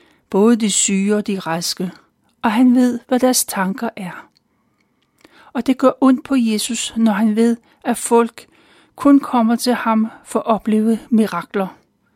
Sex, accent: male, native